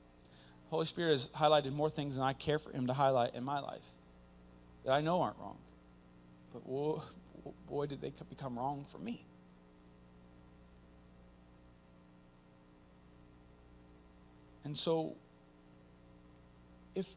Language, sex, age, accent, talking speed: English, male, 40-59, American, 110 wpm